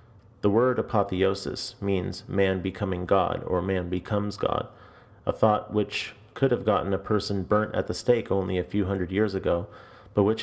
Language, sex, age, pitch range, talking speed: English, male, 30-49, 95-115 Hz, 180 wpm